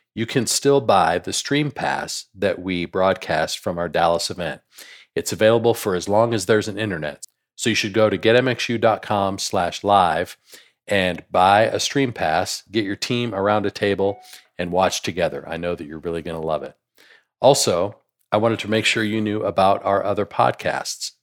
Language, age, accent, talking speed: English, 40-59, American, 185 wpm